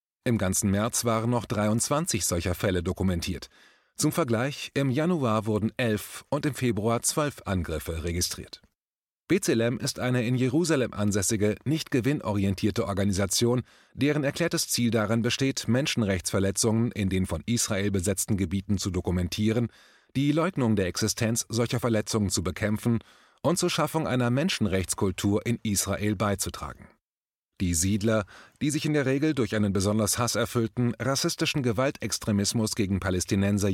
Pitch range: 100-130 Hz